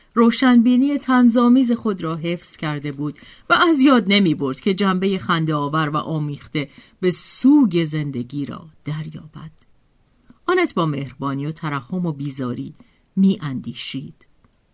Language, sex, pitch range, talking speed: Persian, female, 150-215 Hz, 130 wpm